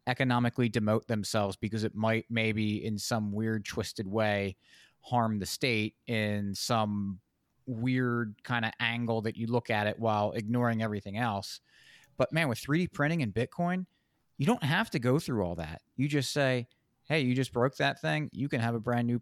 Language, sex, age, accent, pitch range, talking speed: English, male, 30-49, American, 115-150 Hz, 185 wpm